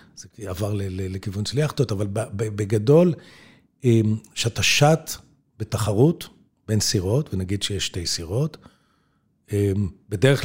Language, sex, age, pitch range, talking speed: Hebrew, male, 50-69, 105-135 Hz, 100 wpm